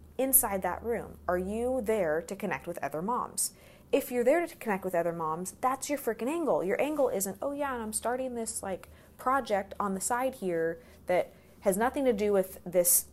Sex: female